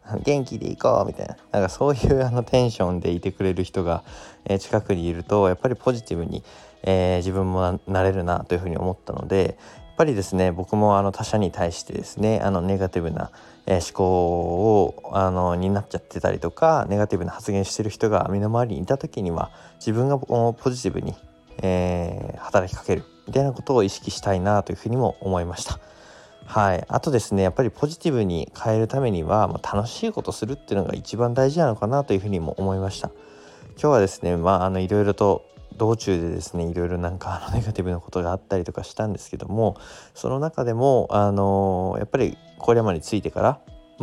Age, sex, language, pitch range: 20-39, male, Japanese, 90-110 Hz